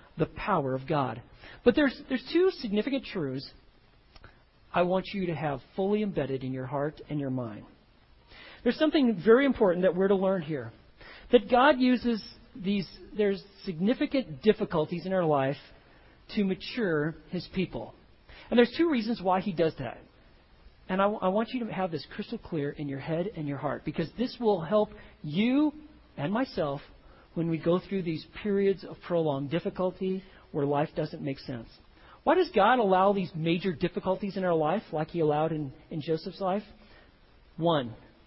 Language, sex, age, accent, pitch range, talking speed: English, male, 40-59, American, 155-230 Hz, 170 wpm